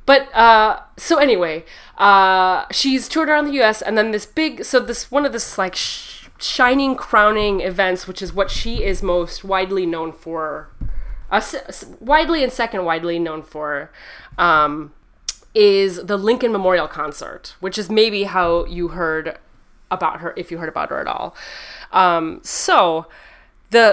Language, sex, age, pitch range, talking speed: English, female, 20-39, 175-240 Hz, 165 wpm